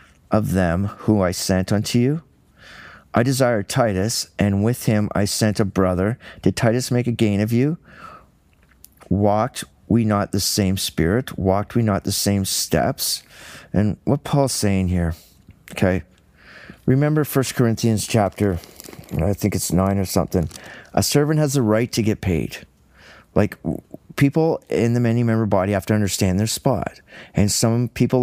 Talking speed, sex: 160 wpm, male